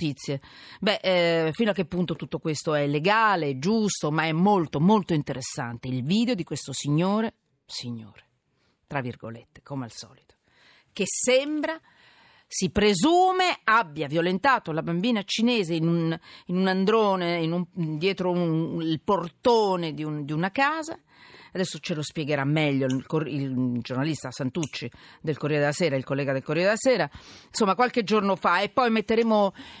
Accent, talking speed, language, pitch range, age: native, 150 wpm, Italian, 150-220 Hz, 40-59